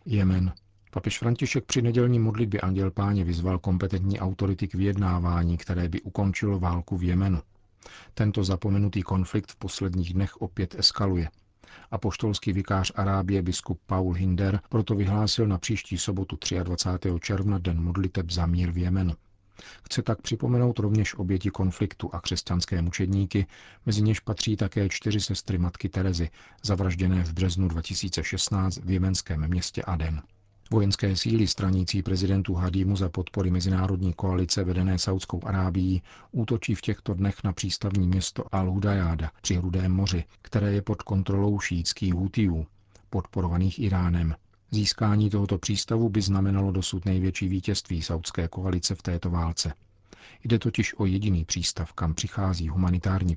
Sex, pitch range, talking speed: male, 90-100 Hz, 140 wpm